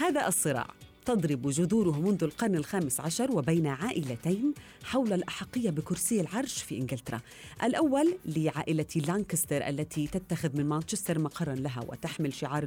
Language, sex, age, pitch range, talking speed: Arabic, female, 30-49, 145-195 Hz, 130 wpm